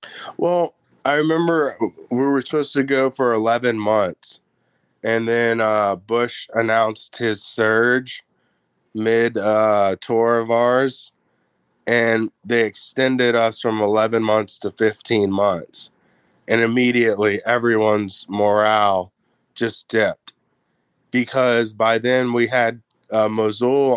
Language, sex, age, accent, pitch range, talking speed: English, male, 20-39, American, 105-115 Hz, 115 wpm